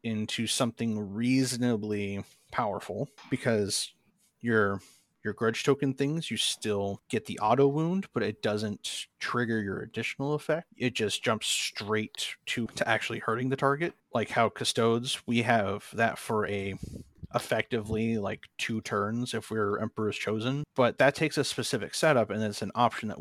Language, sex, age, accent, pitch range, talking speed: English, male, 30-49, American, 105-130 Hz, 155 wpm